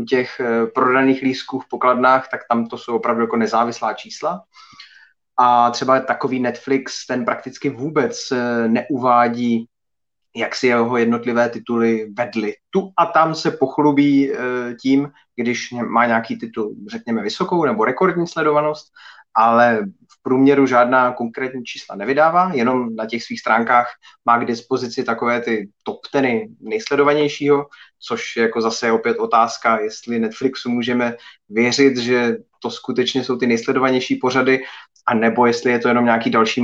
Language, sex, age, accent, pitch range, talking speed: Czech, male, 30-49, native, 115-130 Hz, 140 wpm